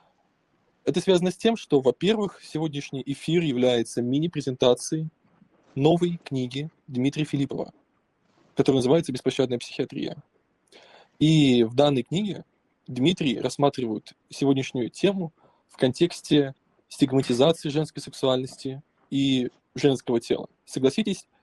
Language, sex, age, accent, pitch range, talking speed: Russian, male, 20-39, native, 130-165 Hz, 100 wpm